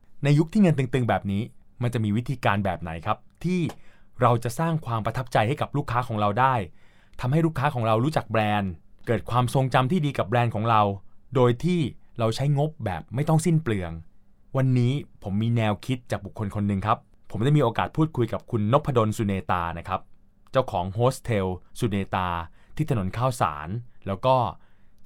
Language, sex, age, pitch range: Thai, male, 20-39, 100-130 Hz